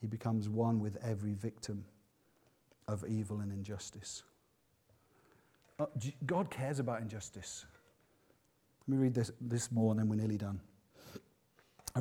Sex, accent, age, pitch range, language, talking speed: male, British, 40-59, 110-135 Hz, English, 130 wpm